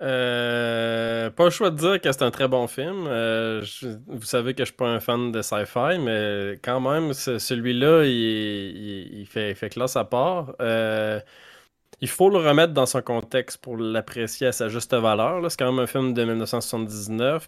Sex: male